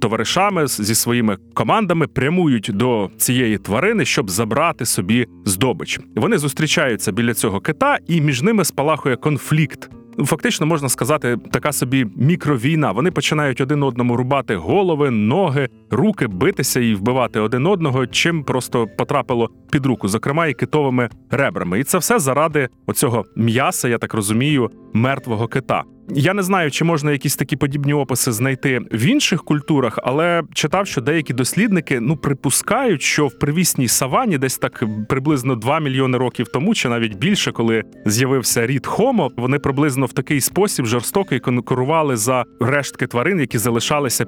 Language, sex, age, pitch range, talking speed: Ukrainian, male, 30-49, 120-155 Hz, 150 wpm